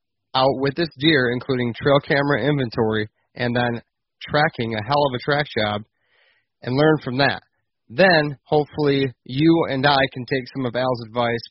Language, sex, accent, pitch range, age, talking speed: English, male, American, 120-145 Hz, 30-49, 165 wpm